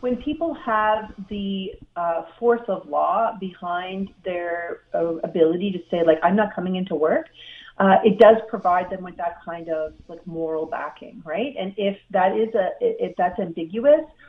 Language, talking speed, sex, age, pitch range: English, 170 wpm, female, 40-59, 175-215 Hz